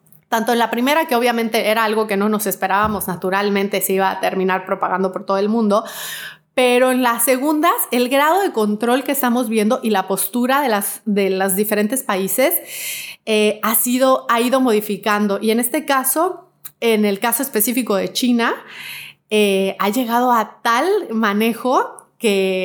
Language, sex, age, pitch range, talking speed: Spanish, female, 30-49, 195-240 Hz, 165 wpm